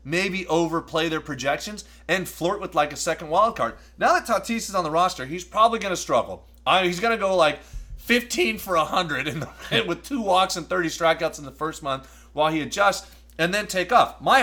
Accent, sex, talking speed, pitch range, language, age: American, male, 220 wpm, 145-190 Hz, English, 30-49